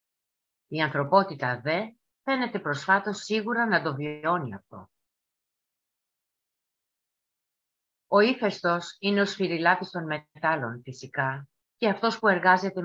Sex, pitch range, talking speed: female, 145-190 Hz, 105 wpm